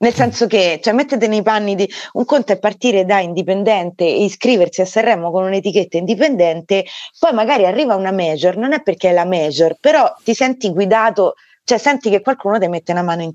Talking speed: 200 wpm